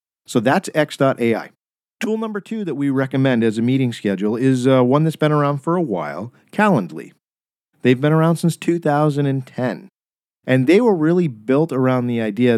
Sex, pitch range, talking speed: male, 110-150 Hz, 170 wpm